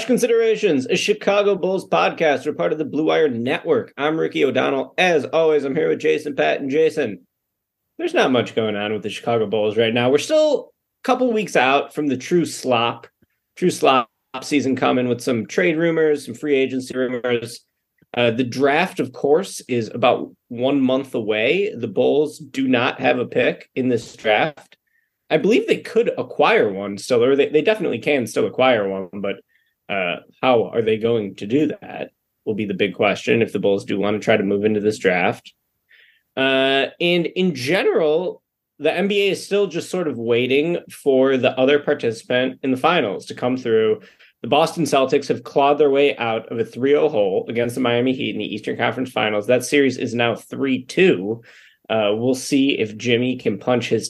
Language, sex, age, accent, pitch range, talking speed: English, male, 30-49, American, 115-170 Hz, 195 wpm